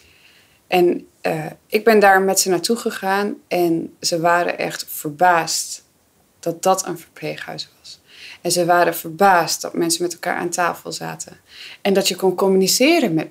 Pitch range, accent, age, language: 175-220 Hz, Dutch, 20-39, Dutch